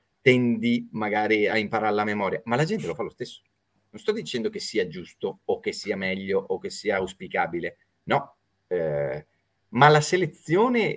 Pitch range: 100-145 Hz